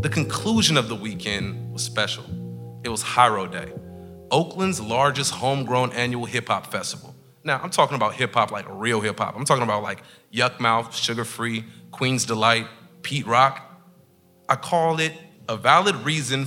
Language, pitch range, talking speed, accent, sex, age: English, 115-165 Hz, 155 wpm, American, male, 30-49